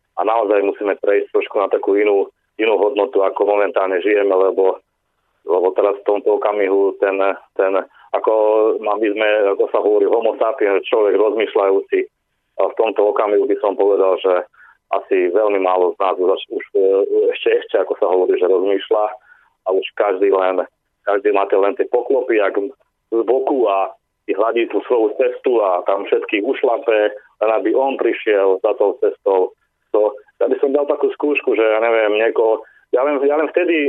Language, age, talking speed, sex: Slovak, 30-49, 170 wpm, male